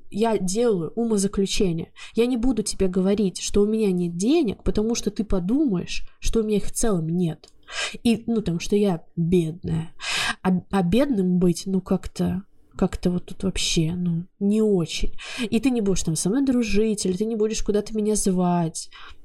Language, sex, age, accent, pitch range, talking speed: Russian, female, 20-39, native, 185-225 Hz, 180 wpm